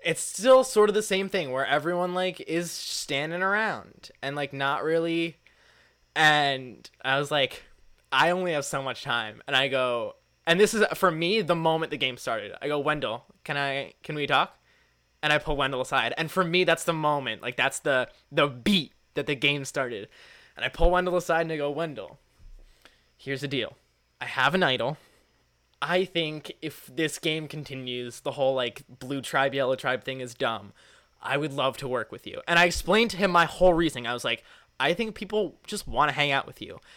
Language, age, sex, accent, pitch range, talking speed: English, 20-39, male, American, 135-170 Hz, 210 wpm